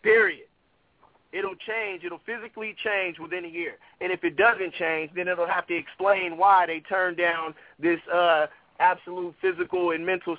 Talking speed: 170 wpm